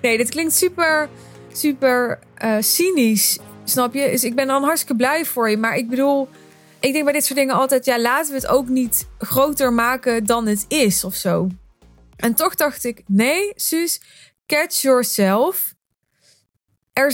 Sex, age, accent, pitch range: female, 20-39, Dutch, 210-275 Hz